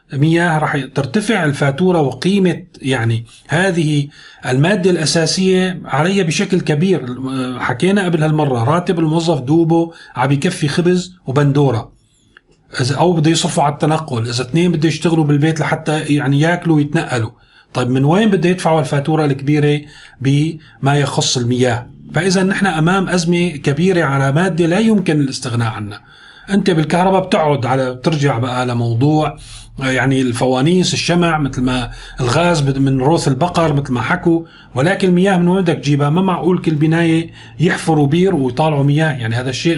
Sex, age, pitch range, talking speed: male, 30-49, 135-175 Hz, 140 wpm